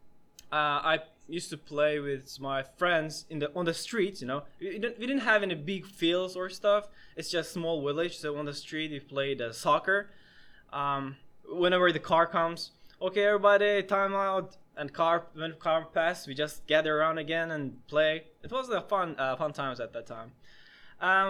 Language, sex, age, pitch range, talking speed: English, male, 20-39, 140-190 Hz, 190 wpm